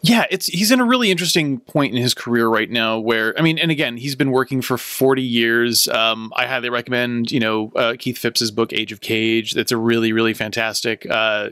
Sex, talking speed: male, 225 wpm